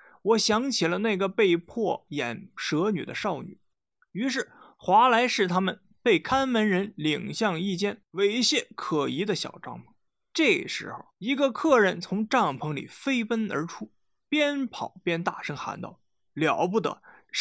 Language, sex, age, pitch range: Chinese, male, 20-39, 185-255 Hz